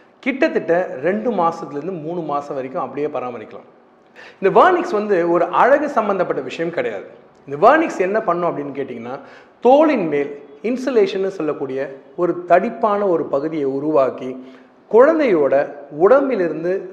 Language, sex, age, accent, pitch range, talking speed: Tamil, male, 40-59, native, 150-210 Hz, 115 wpm